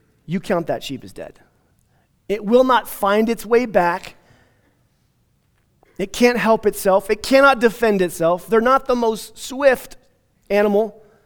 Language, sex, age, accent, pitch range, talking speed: English, male, 30-49, American, 145-210 Hz, 145 wpm